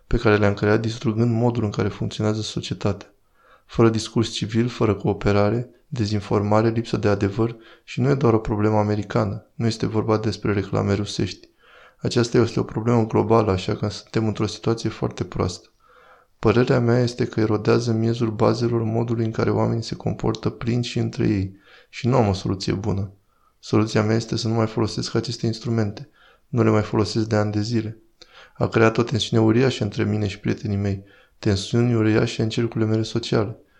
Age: 20-39